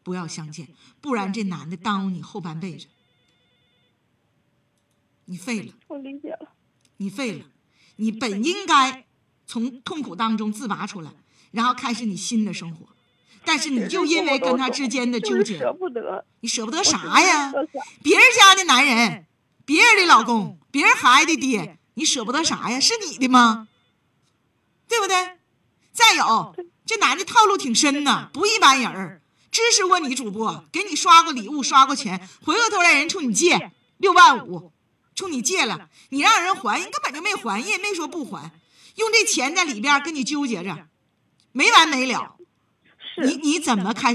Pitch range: 210-325 Hz